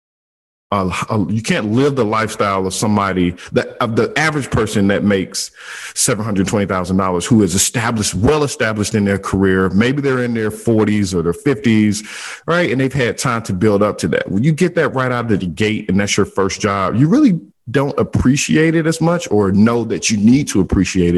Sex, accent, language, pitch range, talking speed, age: male, American, English, 90-125 Hz, 210 wpm, 50-69